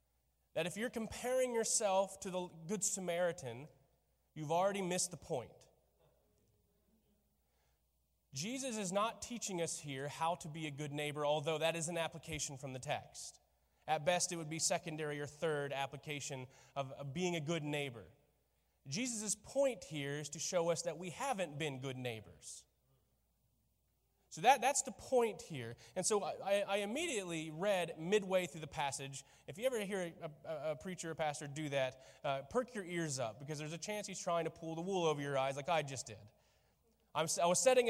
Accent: American